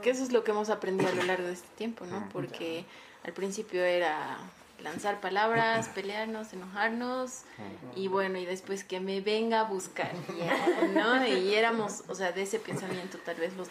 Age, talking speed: 20-39, 185 wpm